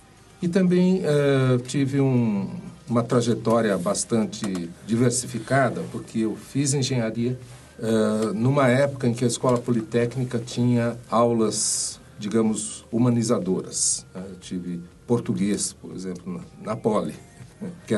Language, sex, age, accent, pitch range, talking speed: Portuguese, male, 60-79, Brazilian, 110-130 Hz, 115 wpm